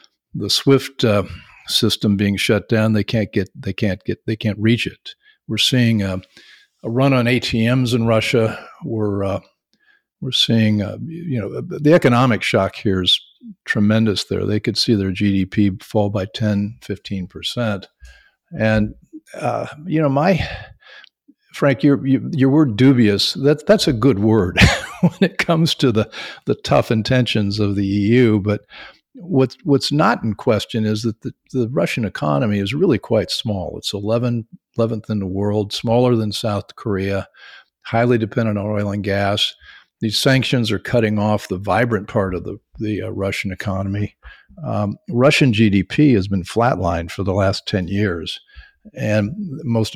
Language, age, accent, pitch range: English, 50-69, American, 100-125 Hz